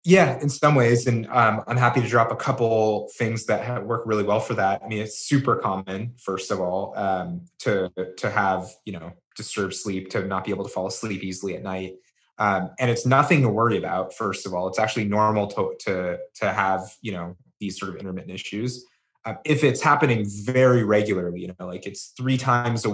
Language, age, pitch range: English, 20-39, 100-125 Hz